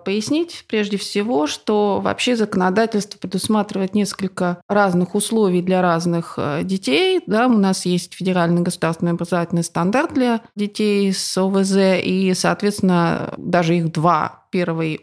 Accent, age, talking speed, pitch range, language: native, 20-39, 120 wpm, 170-215 Hz, Russian